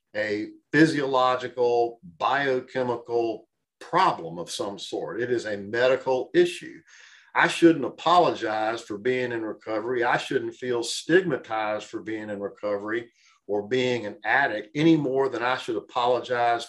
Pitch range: 110-140 Hz